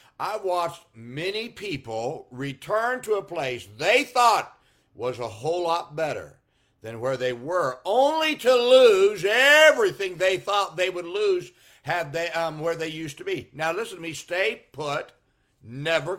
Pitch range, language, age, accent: 140-195 Hz, English, 60-79, American